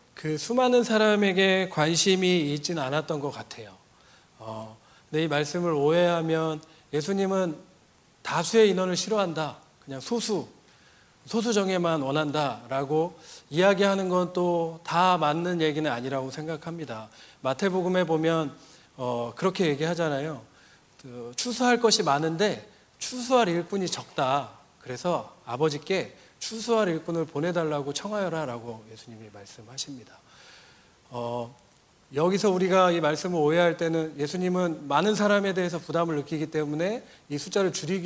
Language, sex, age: Korean, male, 40-59